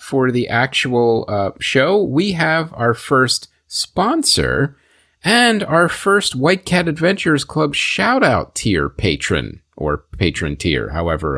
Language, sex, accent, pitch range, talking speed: English, male, American, 100-155 Hz, 125 wpm